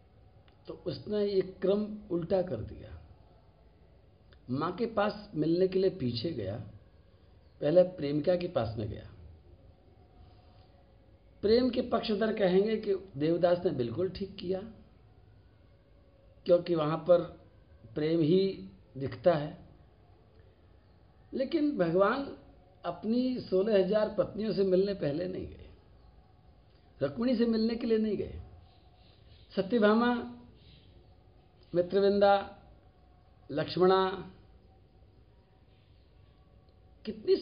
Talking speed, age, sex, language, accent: 100 wpm, 60-79, male, Hindi, native